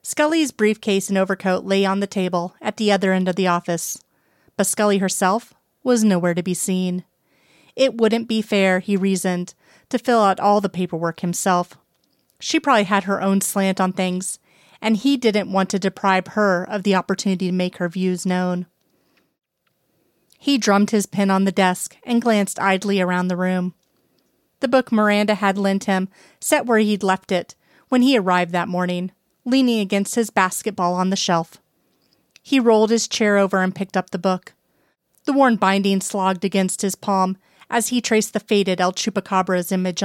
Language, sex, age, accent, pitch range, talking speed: English, female, 30-49, American, 185-215 Hz, 180 wpm